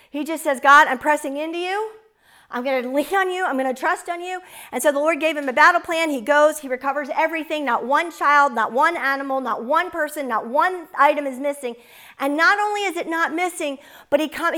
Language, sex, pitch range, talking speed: English, female, 265-340 Hz, 240 wpm